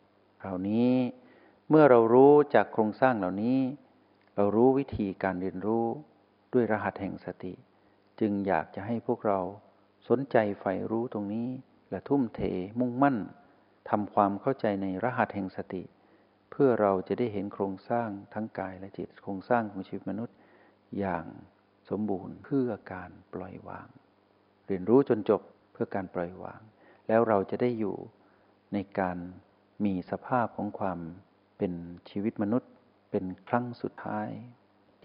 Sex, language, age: male, Thai, 60-79